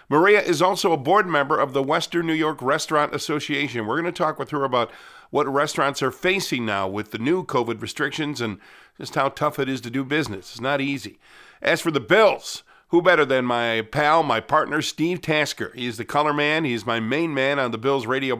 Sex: male